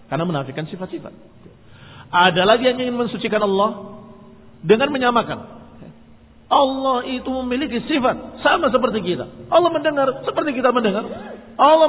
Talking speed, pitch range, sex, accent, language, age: 120 wpm, 130-210 Hz, male, native, Indonesian, 40-59